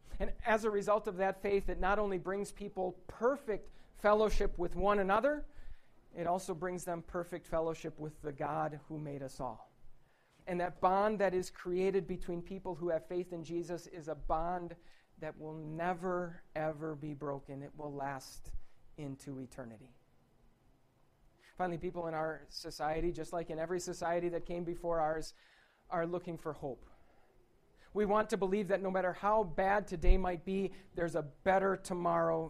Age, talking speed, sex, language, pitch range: 40-59, 170 wpm, male, English, 155-195 Hz